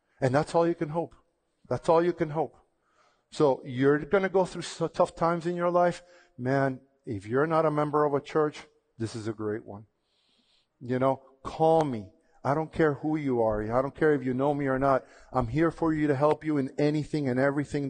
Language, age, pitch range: English, 40-59, 130-160 Hz